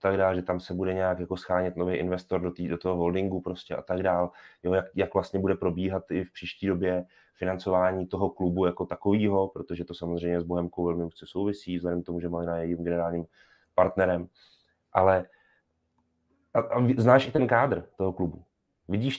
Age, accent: 30-49, native